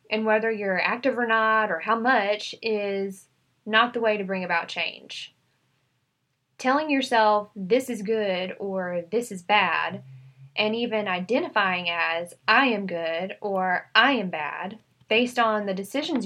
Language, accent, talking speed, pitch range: English, American, 150 wpm, 180-225 Hz